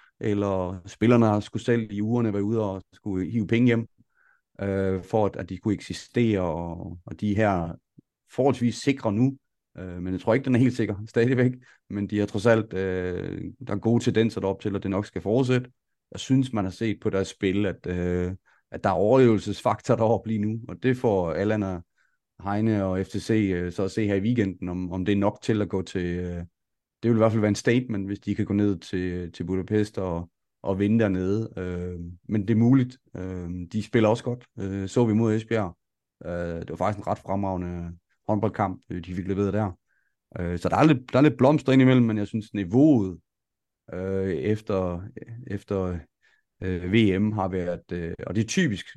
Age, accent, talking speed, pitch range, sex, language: 30-49, native, 210 wpm, 95-115 Hz, male, Danish